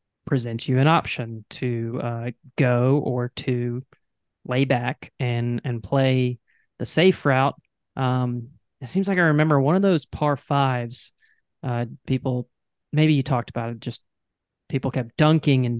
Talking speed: 150 wpm